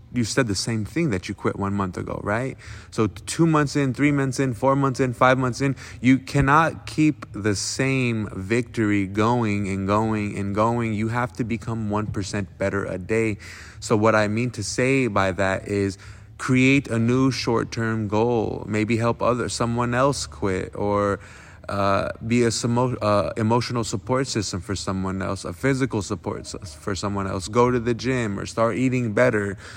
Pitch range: 100-120 Hz